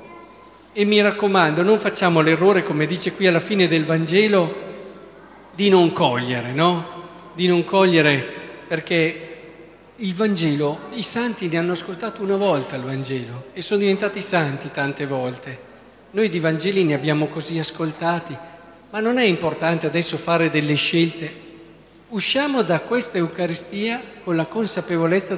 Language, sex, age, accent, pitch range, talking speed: Italian, male, 50-69, native, 150-195 Hz, 140 wpm